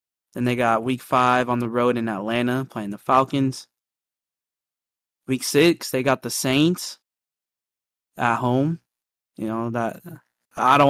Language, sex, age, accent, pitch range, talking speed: English, male, 20-39, American, 115-130 Hz, 145 wpm